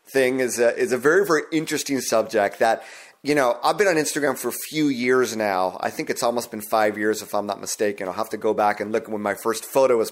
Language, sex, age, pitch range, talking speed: English, male, 30-49, 115-170 Hz, 260 wpm